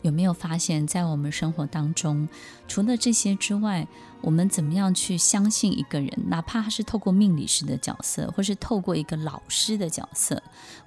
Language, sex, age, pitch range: Chinese, female, 20-39, 155-215 Hz